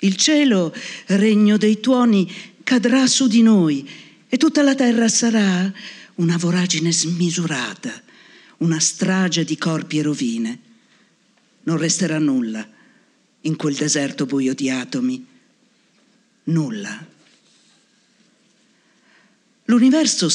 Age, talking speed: 50-69, 100 wpm